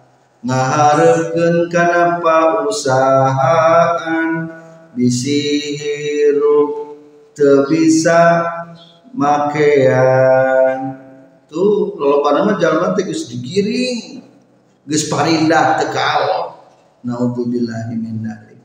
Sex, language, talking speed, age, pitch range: male, Indonesian, 50 wpm, 40-59, 140-190 Hz